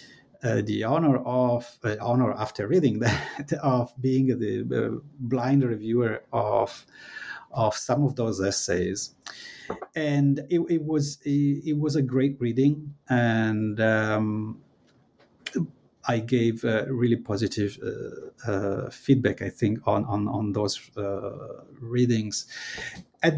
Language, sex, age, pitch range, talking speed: English, male, 50-69, 110-135 Hz, 125 wpm